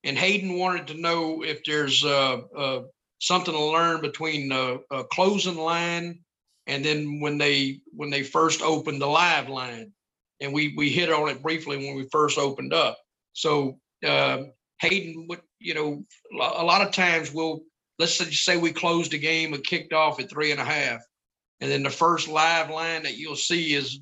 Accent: American